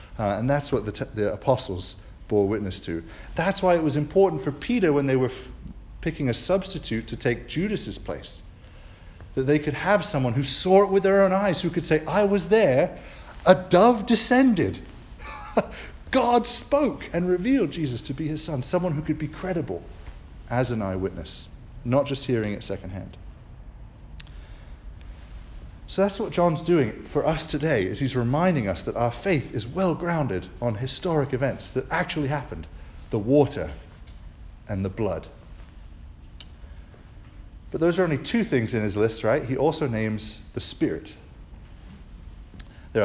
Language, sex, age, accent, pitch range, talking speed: English, male, 40-59, British, 100-155 Hz, 160 wpm